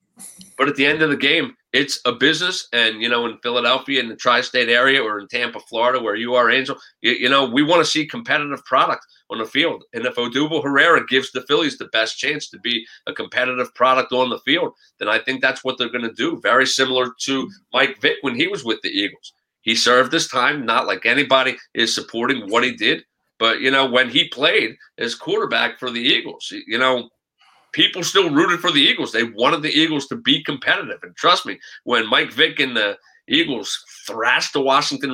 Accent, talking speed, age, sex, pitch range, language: American, 215 wpm, 40-59, male, 120-165 Hz, English